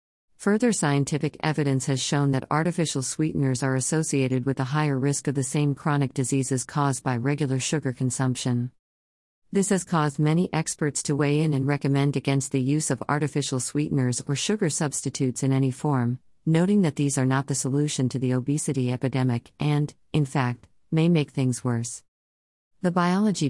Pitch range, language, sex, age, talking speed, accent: 130-155 Hz, English, female, 40-59, 170 wpm, American